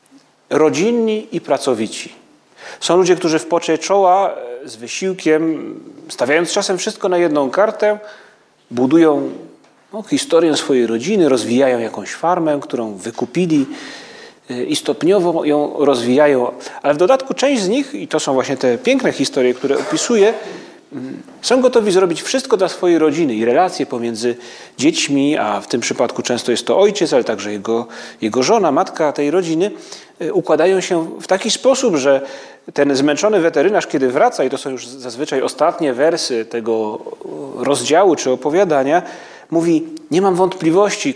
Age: 30-49